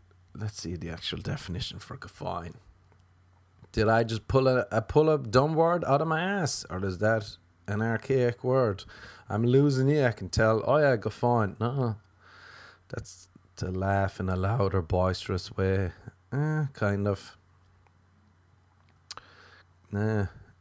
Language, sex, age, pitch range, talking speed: English, male, 20-39, 90-110 Hz, 145 wpm